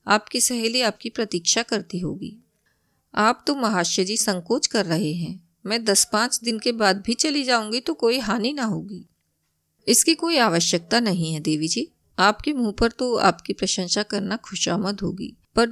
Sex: female